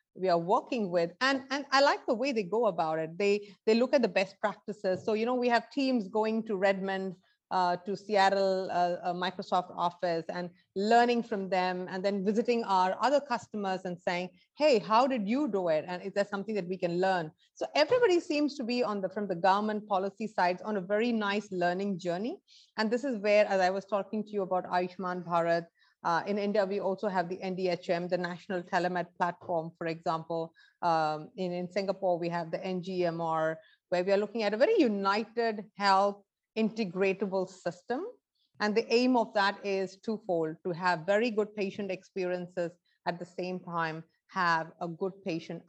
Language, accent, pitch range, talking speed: English, Indian, 180-215 Hz, 195 wpm